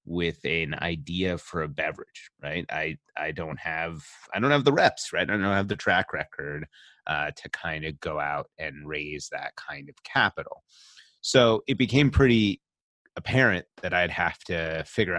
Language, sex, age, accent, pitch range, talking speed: English, male, 30-49, American, 80-105 Hz, 180 wpm